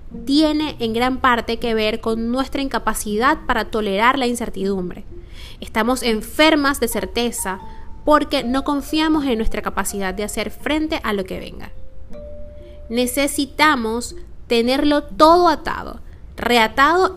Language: Spanish